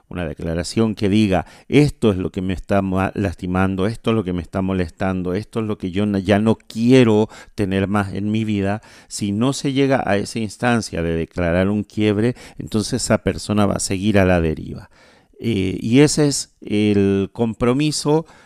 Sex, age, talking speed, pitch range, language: male, 40-59, 185 wpm, 95-115 Hz, Spanish